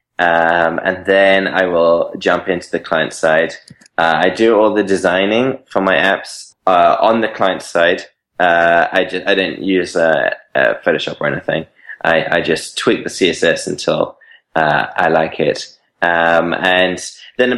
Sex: male